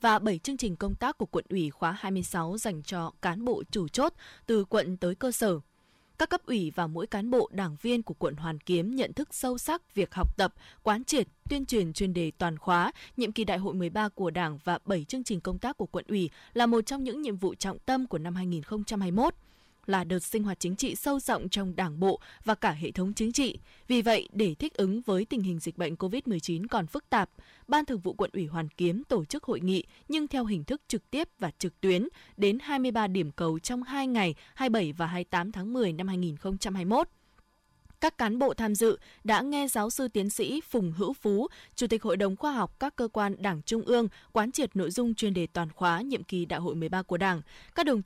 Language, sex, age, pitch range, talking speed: Vietnamese, female, 20-39, 180-240 Hz, 230 wpm